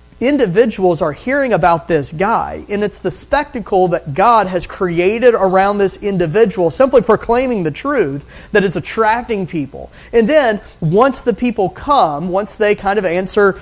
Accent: American